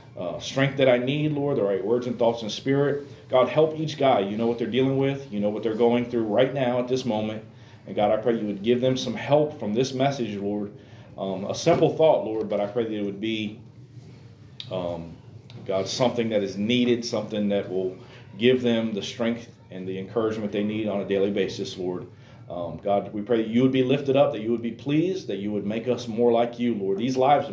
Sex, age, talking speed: male, 40-59, 240 wpm